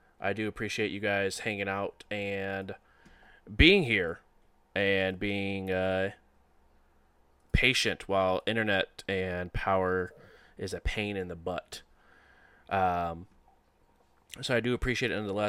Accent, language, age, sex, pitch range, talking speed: American, English, 20-39, male, 95-120 Hz, 120 wpm